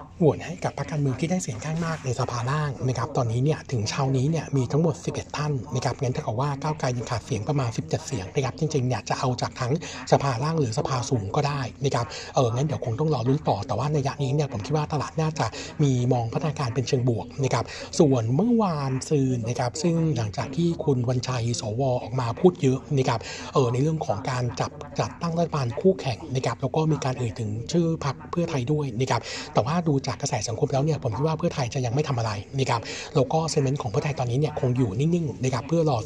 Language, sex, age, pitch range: Thai, male, 60-79, 125-150 Hz